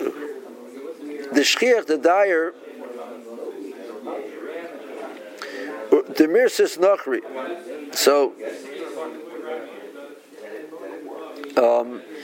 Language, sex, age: English, male, 50-69